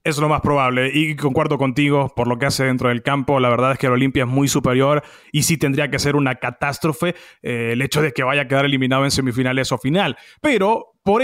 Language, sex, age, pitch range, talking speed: English, male, 30-49, 140-220 Hz, 240 wpm